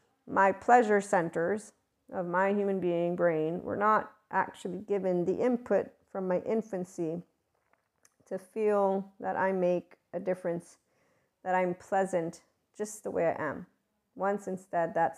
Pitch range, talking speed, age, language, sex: 165-200 Hz, 140 wpm, 40-59, English, female